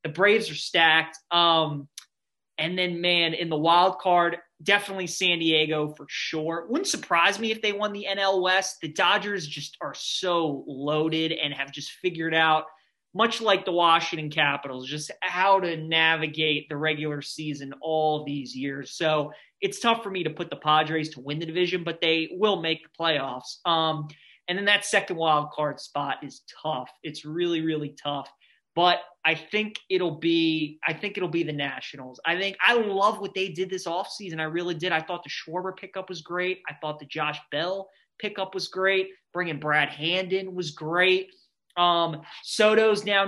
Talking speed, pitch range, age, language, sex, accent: 185 wpm, 155-185 Hz, 20-39, English, male, American